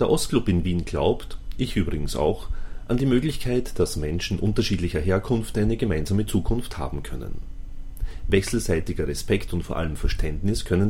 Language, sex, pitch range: German, male, 85-105 Hz